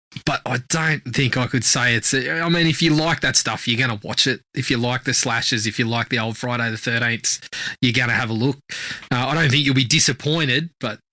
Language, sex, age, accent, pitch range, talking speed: English, male, 20-39, Australian, 125-155 Hz, 250 wpm